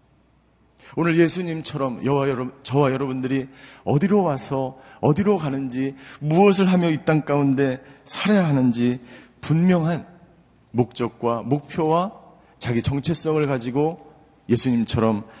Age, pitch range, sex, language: 40-59, 115-155 Hz, male, Korean